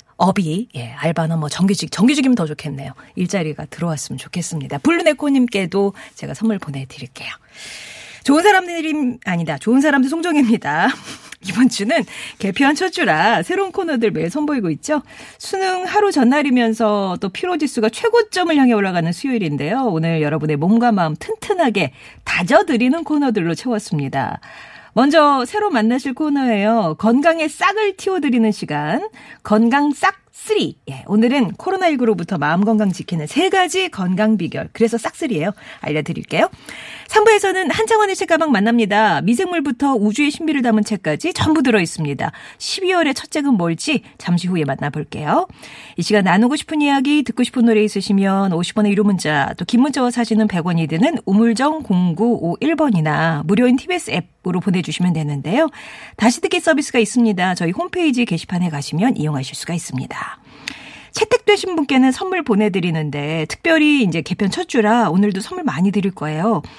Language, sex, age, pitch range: Korean, female, 40-59, 175-295 Hz